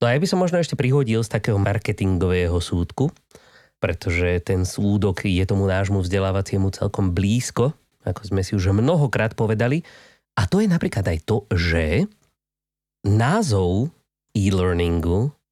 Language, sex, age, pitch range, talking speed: Slovak, male, 30-49, 95-125 Hz, 135 wpm